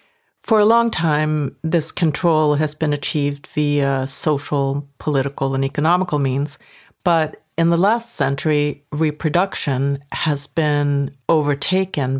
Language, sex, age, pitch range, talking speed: English, female, 60-79, 140-170 Hz, 120 wpm